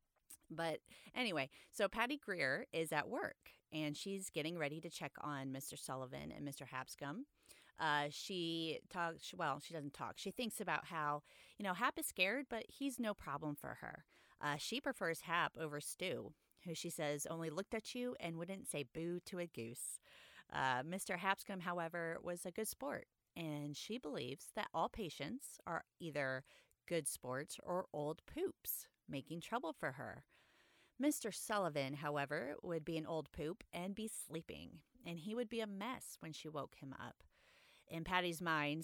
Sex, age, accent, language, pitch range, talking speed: female, 30-49, American, English, 145-205 Hz, 170 wpm